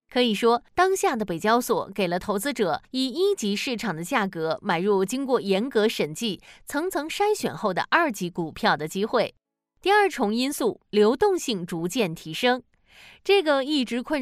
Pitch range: 200-275 Hz